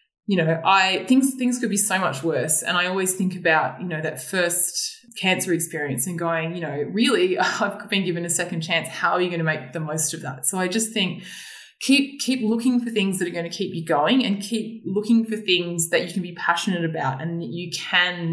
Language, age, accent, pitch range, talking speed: English, 20-39, Australian, 160-200 Hz, 240 wpm